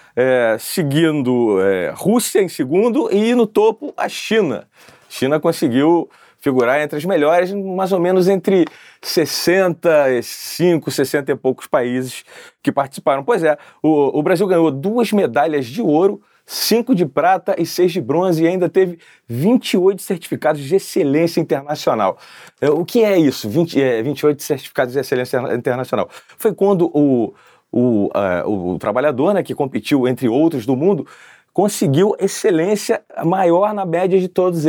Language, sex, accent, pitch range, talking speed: Portuguese, male, Brazilian, 125-185 Hz, 145 wpm